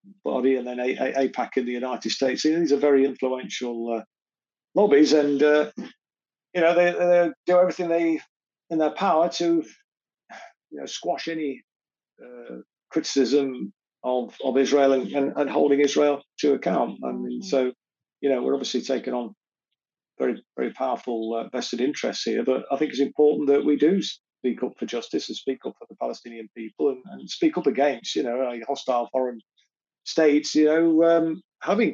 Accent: British